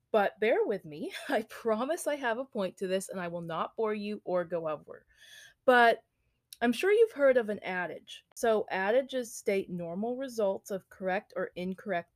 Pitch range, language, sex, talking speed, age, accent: 175-220 Hz, English, female, 190 wpm, 30-49, American